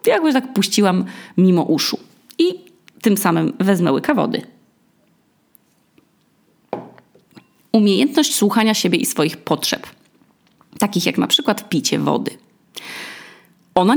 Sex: female